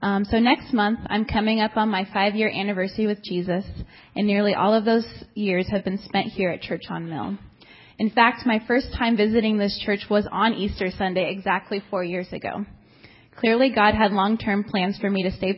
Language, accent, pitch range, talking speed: English, American, 190-225 Hz, 200 wpm